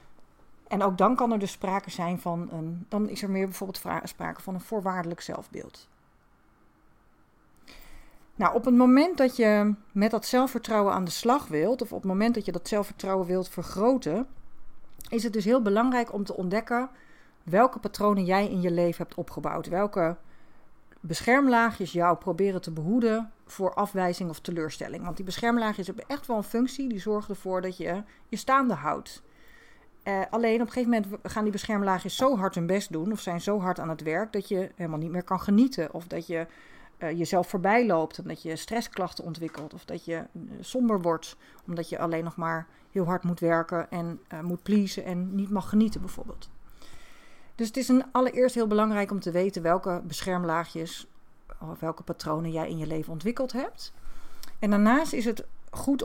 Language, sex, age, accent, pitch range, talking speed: Dutch, female, 40-59, Dutch, 175-225 Hz, 185 wpm